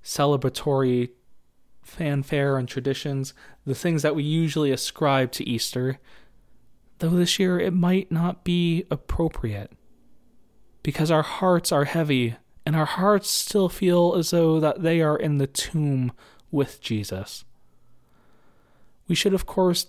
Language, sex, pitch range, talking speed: English, male, 125-165 Hz, 135 wpm